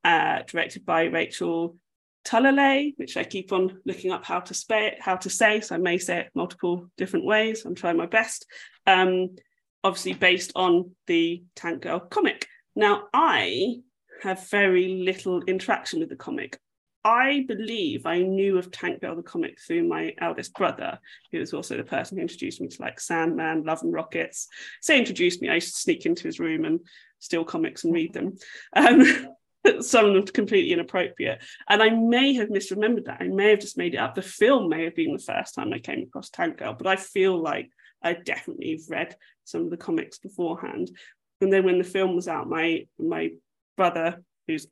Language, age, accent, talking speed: English, 20-39, British, 190 wpm